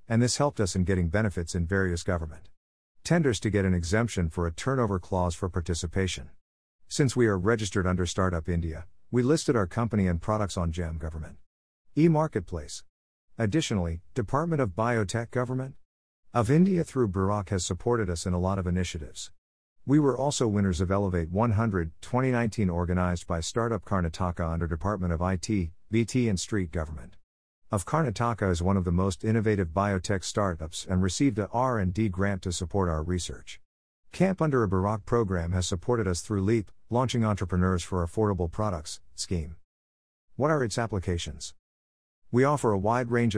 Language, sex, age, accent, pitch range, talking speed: English, male, 50-69, American, 85-115 Hz, 165 wpm